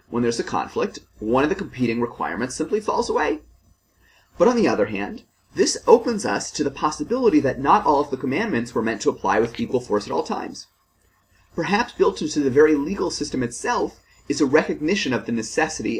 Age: 30-49